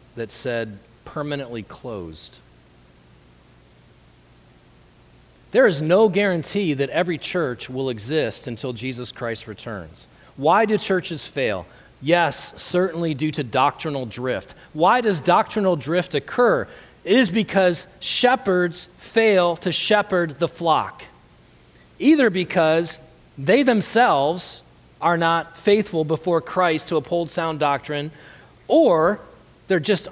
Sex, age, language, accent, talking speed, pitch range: male, 40-59, English, American, 115 wpm, 115-180 Hz